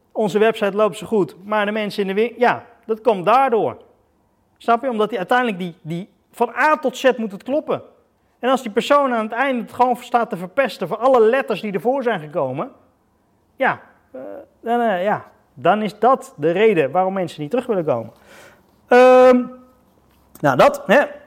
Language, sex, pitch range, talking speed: Dutch, male, 175-245 Hz, 185 wpm